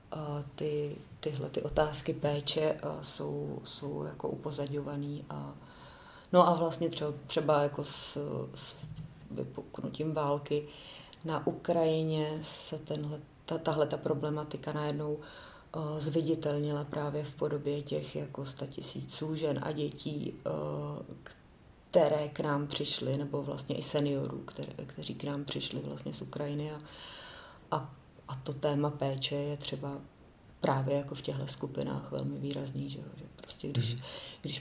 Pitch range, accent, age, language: 130-150 Hz, native, 30-49, Czech